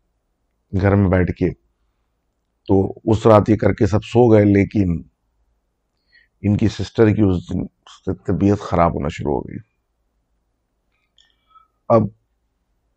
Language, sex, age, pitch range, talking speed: Urdu, male, 50-69, 85-105 Hz, 130 wpm